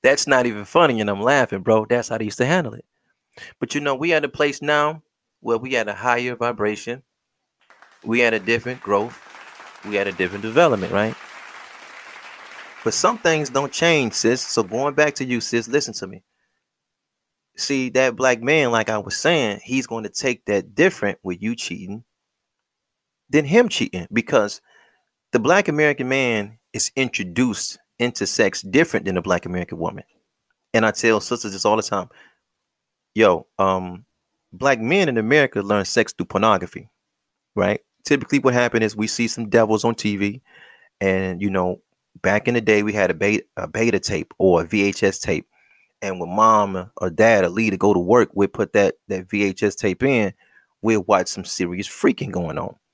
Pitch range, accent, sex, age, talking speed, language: 100-130 Hz, American, male, 30-49, 180 wpm, English